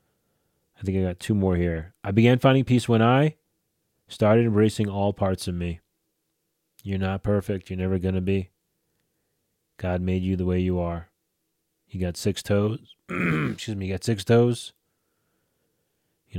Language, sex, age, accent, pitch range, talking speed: English, male, 30-49, American, 95-115 Hz, 165 wpm